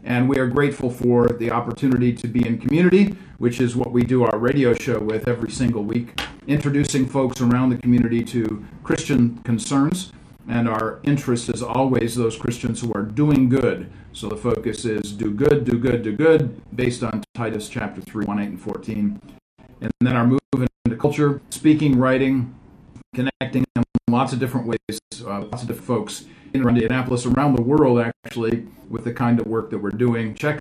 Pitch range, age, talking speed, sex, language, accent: 115-135 Hz, 50-69, 185 wpm, male, English, American